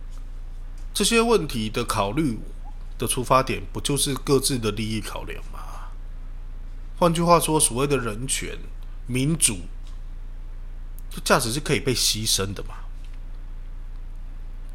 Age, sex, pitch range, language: 20-39, male, 85-120 Hz, Chinese